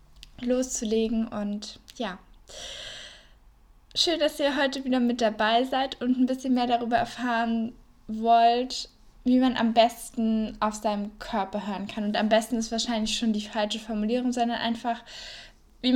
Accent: German